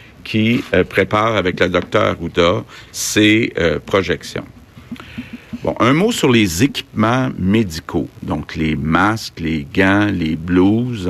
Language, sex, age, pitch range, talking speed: French, male, 50-69, 95-115 Hz, 130 wpm